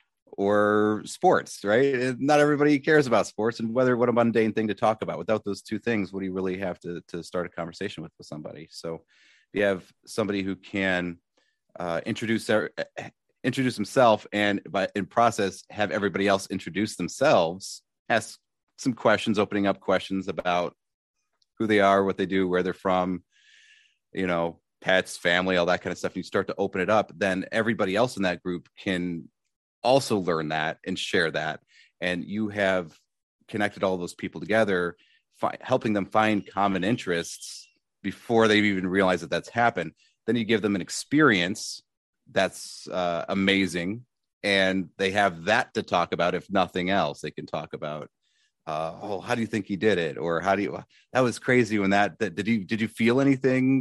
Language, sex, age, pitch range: English, male, 30-49, 95-110 Hz